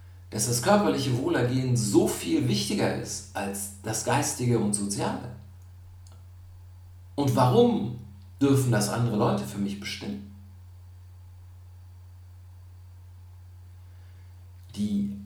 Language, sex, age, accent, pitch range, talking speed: German, male, 50-69, German, 90-115 Hz, 90 wpm